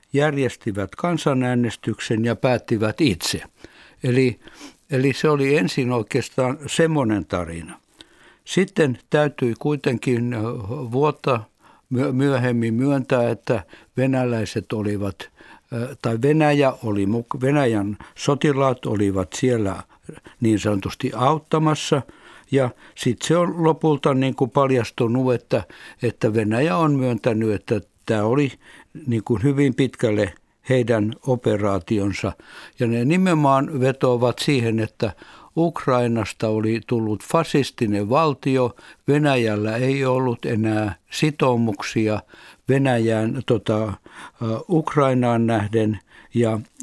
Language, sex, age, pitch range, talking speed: Finnish, male, 60-79, 110-140 Hz, 95 wpm